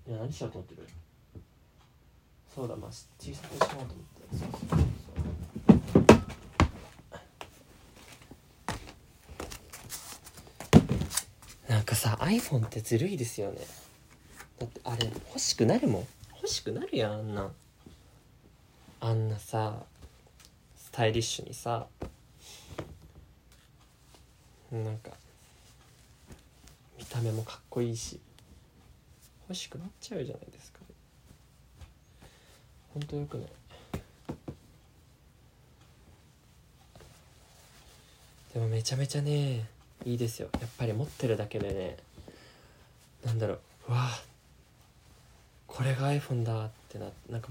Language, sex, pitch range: Japanese, male, 105-130 Hz